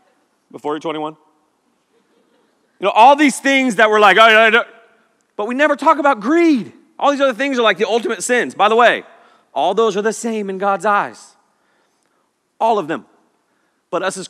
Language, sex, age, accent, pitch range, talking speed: English, male, 30-49, American, 175-260 Hz, 195 wpm